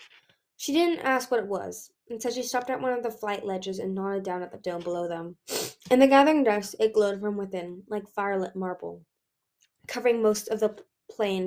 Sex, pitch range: female, 185-225 Hz